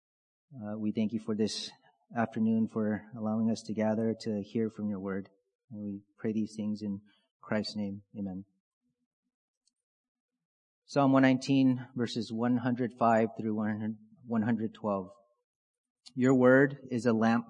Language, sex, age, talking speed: English, male, 30-49, 125 wpm